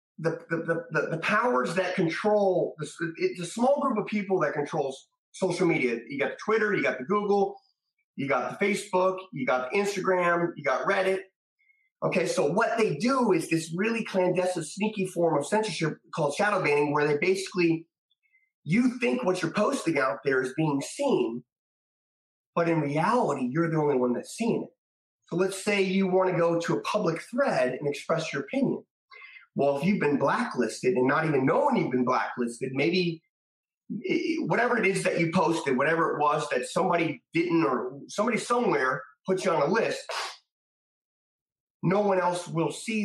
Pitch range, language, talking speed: 150-210 Hz, English, 180 wpm